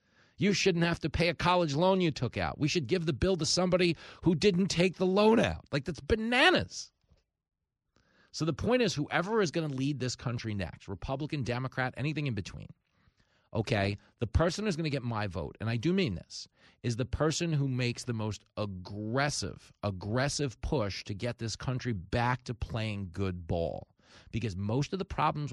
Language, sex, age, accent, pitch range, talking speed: English, male, 40-59, American, 105-150 Hz, 195 wpm